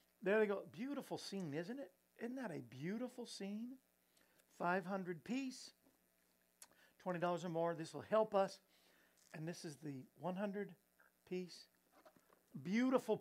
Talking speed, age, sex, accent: 125 wpm, 50-69, male, American